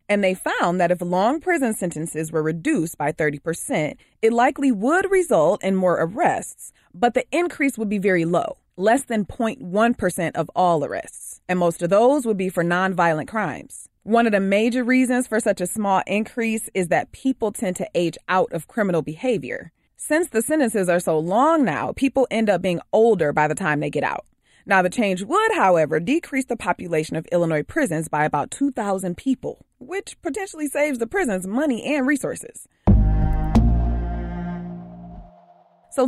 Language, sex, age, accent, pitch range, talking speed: English, female, 30-49, American, 175-265 Hz, 170 wpm